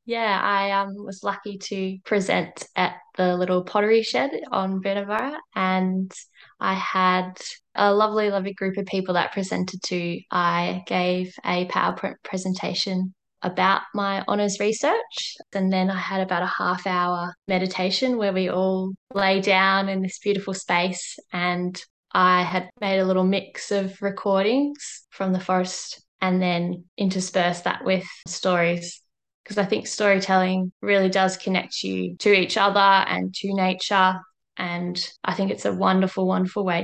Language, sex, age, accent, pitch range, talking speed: English, female, 10-29, Australian, 180-200 Hz, 150 wpm